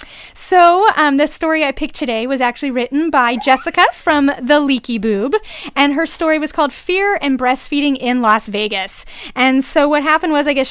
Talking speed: 190 wpm